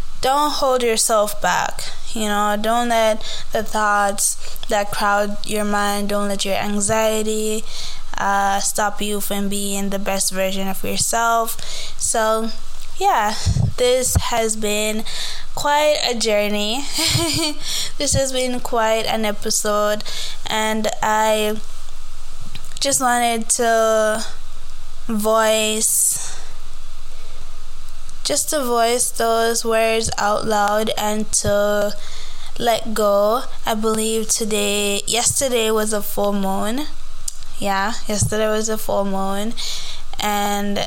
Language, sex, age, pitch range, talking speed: English, female, 10-29, 205-230 Hz, 110 wpm